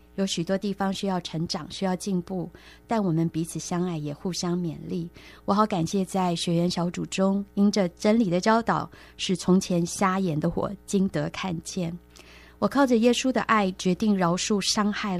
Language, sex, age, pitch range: Chinese, female, 20-39, 165-205 Hz